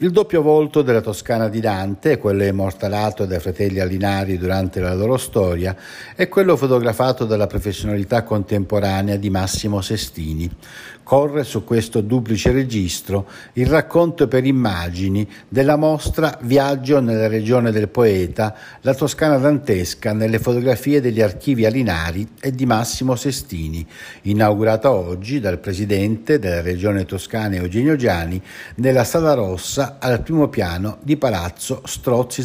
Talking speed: 130 wpm